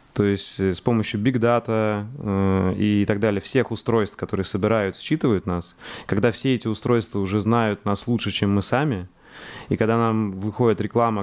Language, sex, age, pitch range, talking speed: Russian, male, 20-39, 100-120 Hz, 165 wpm